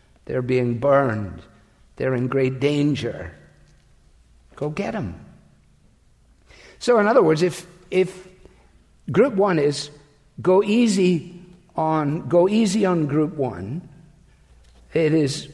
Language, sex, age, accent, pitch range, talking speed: English, male, 60-79, American, 140-190 Hz, 110 wpm